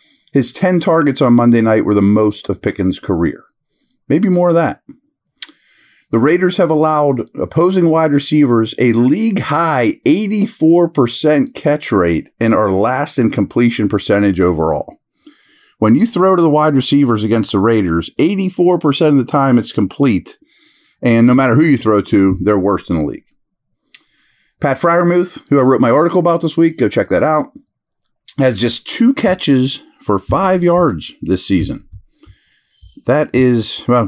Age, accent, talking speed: 40-59, American, 155 wpm